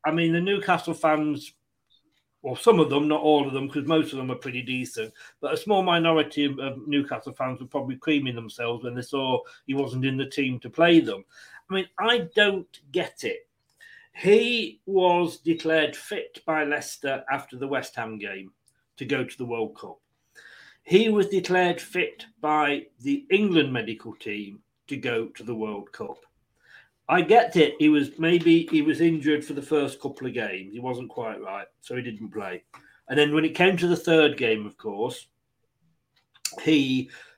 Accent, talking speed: British, 185 wpm